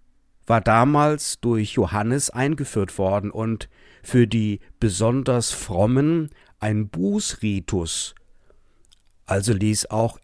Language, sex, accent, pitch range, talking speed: German, male, German, 100-140 Hz, 95 wpm